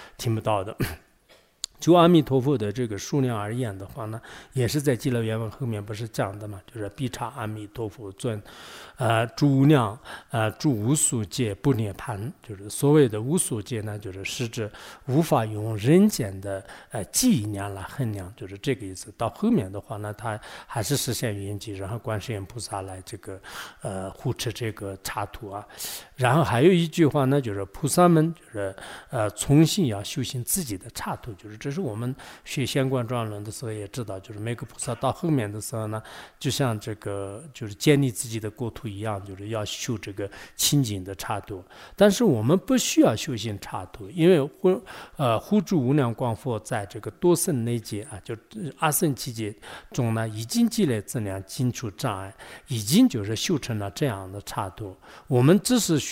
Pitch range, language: 105-140 Hz, English